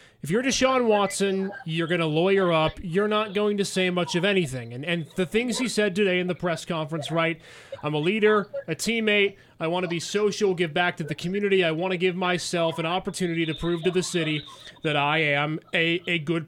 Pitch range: 165-200 Hz